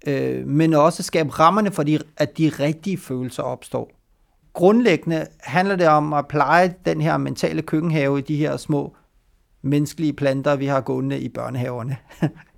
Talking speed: 150 wpm